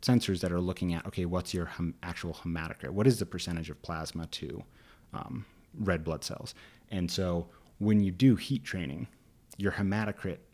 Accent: American